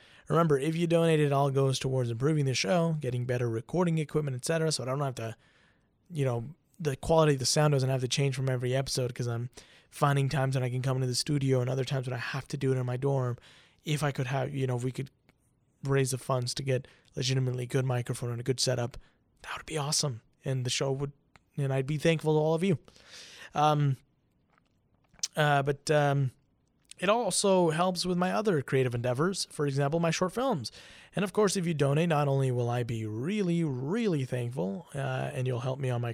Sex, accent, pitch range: male, American, 130-155 Hz